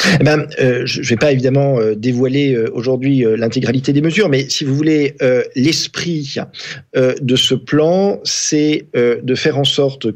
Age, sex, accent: 40-59, male, French